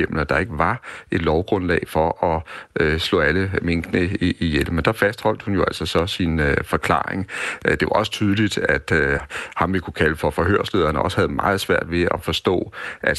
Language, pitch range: Danish, 80-90 Hz